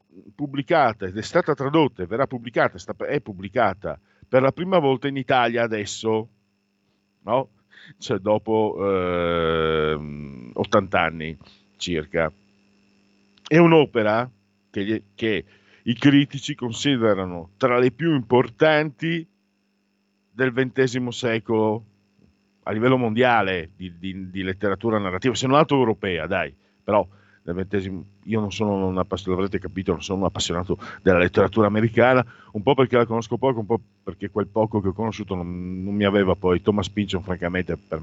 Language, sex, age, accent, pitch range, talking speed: Italian, male, 50-69, native, 95-120 Hz, 140 wpm